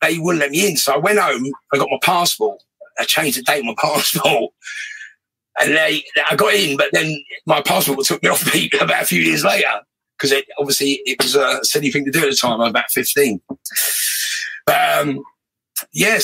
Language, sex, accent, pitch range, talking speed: English, male, British, 125-190 Hz, 215 wpm